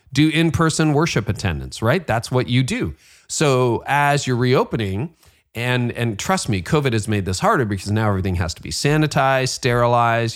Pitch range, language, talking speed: 100-130 Hz, English, 175 wpm